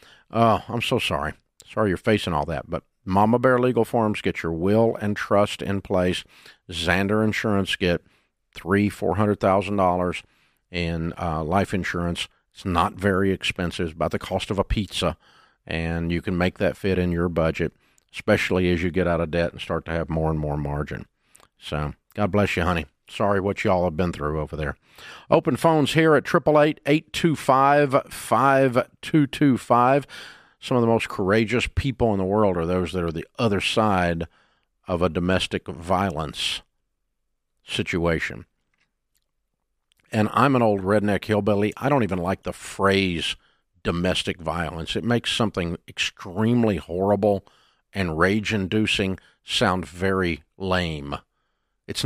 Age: 50-69